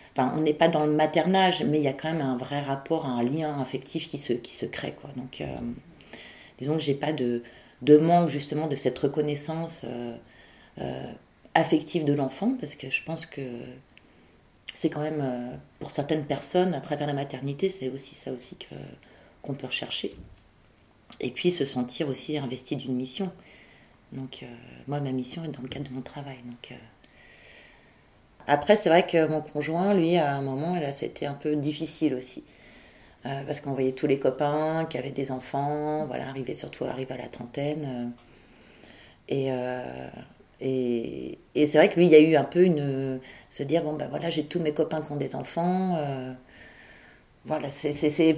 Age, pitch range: 30-49, 130-165 Hz